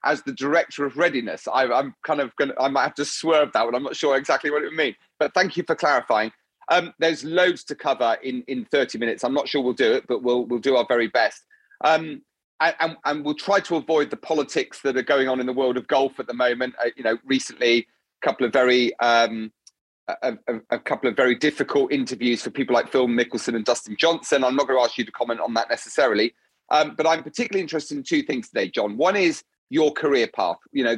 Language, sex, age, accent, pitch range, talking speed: English, male, 40-59, British, 125-175 Hz, 250 wpm